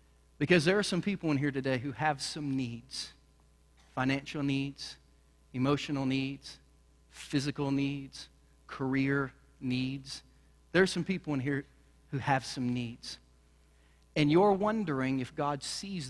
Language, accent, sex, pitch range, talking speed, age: English, American, male, 125-170 Hz, 135 wpm, 40-59